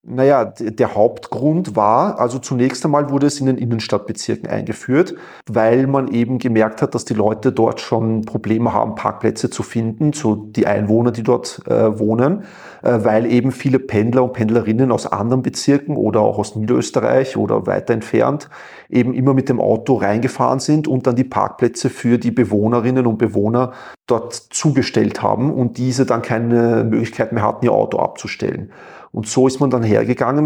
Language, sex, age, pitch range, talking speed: German, male, 40-59, 115-135 Hz, 170 wpm